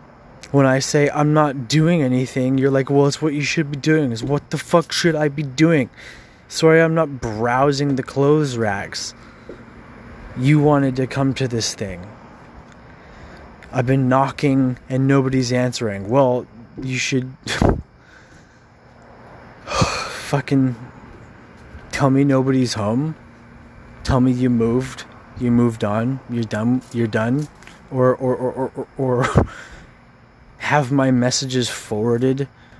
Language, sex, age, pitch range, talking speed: English, male, 20-39, 115-135 Hz, 130 wpm